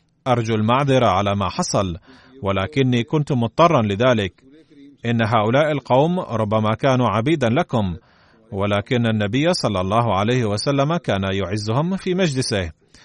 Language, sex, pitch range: Arabic, male, 105-135 Hz